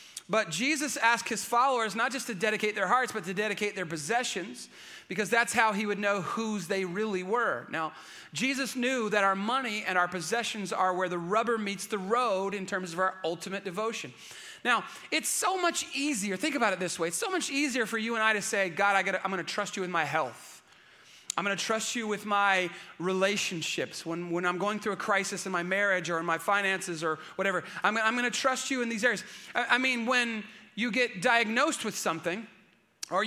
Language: English